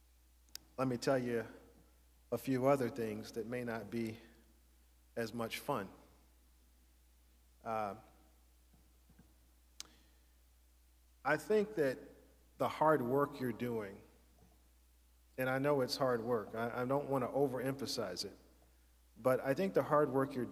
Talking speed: 130 wpm